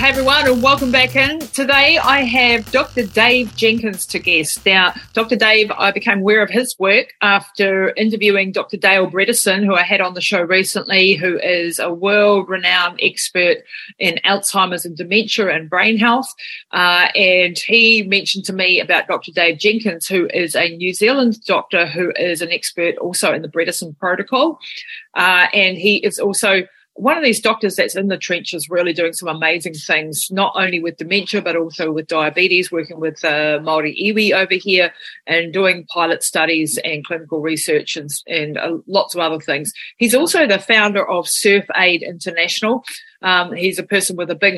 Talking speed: 180 wpm